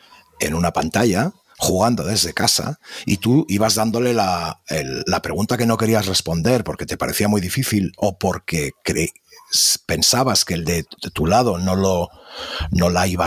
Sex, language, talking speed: male, Spanish, 175 wpm